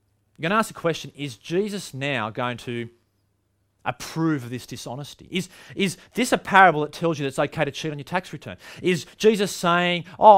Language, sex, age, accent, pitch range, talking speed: English, male, 30-49, Australian, 110-160 Hz, 210 wpm